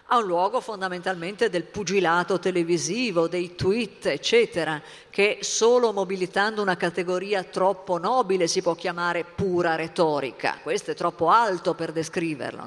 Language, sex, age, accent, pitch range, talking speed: Italian, female, 50-69, native, 175-225 Hz, 135 wpm